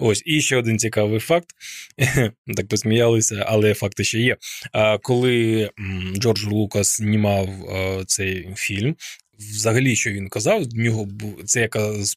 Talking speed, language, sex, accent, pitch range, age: 135 wpm, Ukrainian, male, native, 110-140 Hz, 20-39